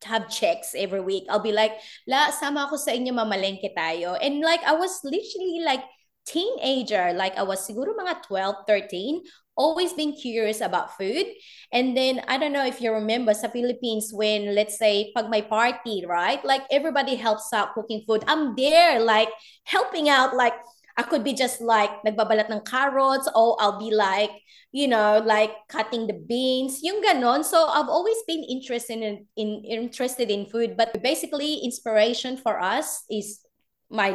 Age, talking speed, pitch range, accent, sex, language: 20-39, 170 wpm, 215-295 Hz, native, female, Filipino